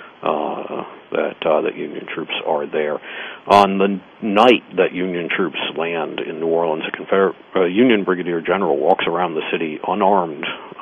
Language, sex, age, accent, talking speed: English, male, 60-79, American, 160 wpm